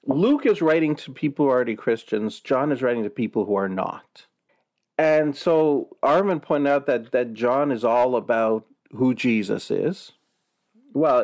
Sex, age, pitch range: male, 40-59, 110-145 Hz